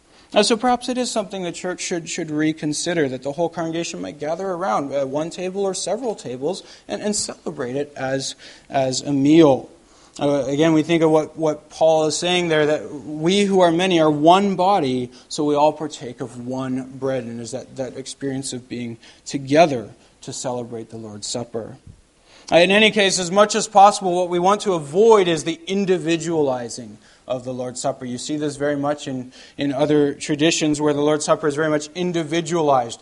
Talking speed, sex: 180 wpm, male